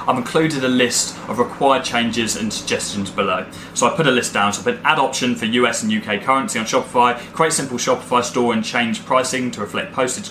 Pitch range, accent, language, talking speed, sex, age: 110-135 Hz, British, English, 220 wpm, male, 20-39